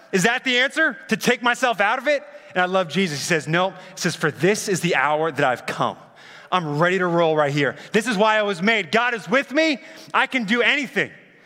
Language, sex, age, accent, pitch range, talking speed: English, male, 30-49, American, 200-280 Hz, 245 wpm